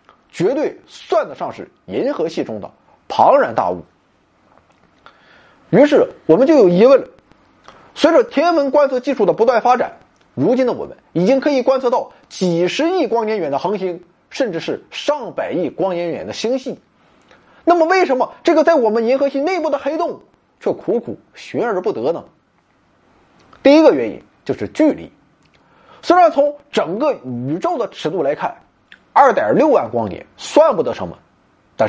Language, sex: Chinese, male